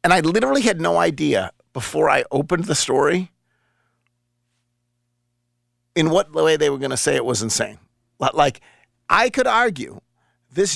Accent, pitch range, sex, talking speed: American, 120-200 Hz, male, 150 wpm